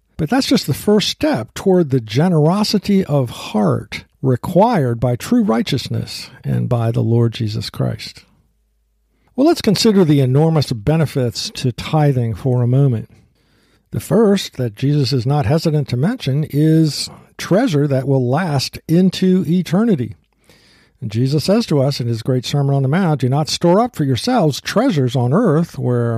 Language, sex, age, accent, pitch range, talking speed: English, male, 60-79, American, 120-165 Hz, 160 wpm